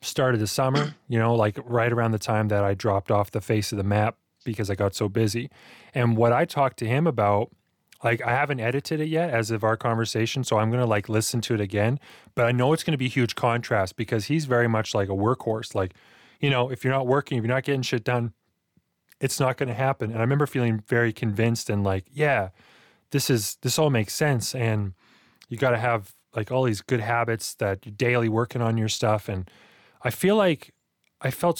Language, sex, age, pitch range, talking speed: English, male, 20-39, 110-135 Hz, 230 wpm